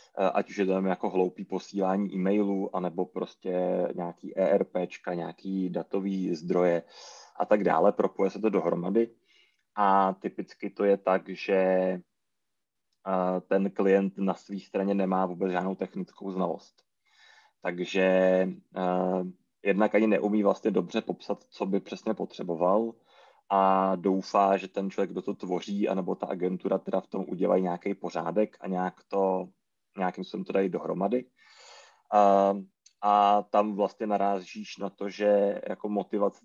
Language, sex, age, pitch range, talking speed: Czech, male, 20-39, 95-105 Hz, 140 wpm